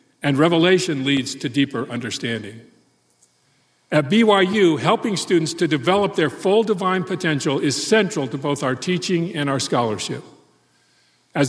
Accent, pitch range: American, 130-170 Hz